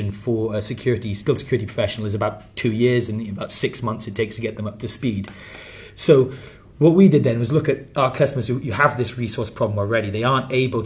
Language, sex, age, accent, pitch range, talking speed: English, male, 30-49, British, 105-125 Hz, 225 wpm